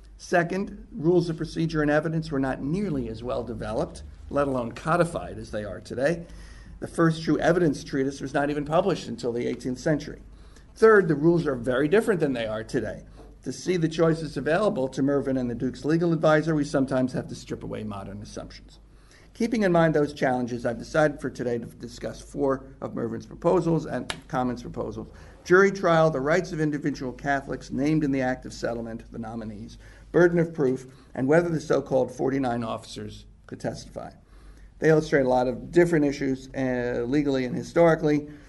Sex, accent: male, American